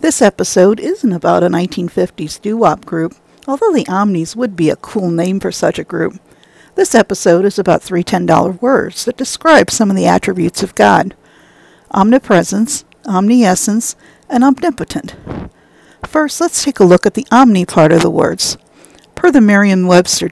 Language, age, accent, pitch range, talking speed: English, 50-69, American, 180-240 Hz, 160 wpm